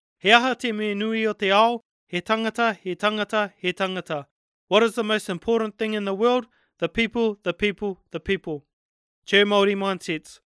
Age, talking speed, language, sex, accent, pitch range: 30-49, 170 wpm, English, male, Australian, 180-220 Hz